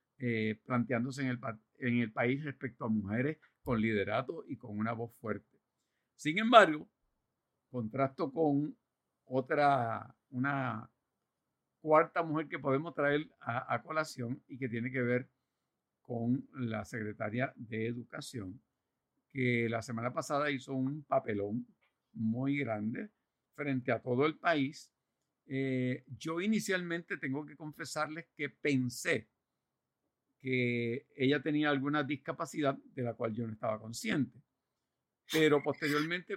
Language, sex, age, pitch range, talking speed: Spanish, male, 50-69, 120-150 Hz, 130 wpm